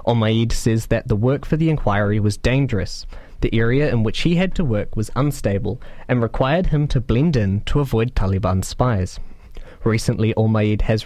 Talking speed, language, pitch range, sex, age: 180 wpm, English, 105-135 Hz, male, 20-39